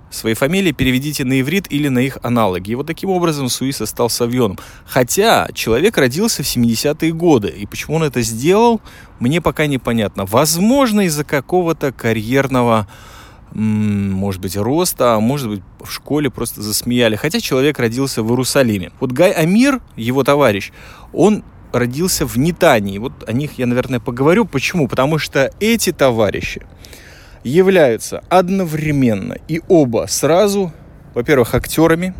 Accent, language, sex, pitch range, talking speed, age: native, Russian, male, 115-165 Hz, 140 wpm, 20-39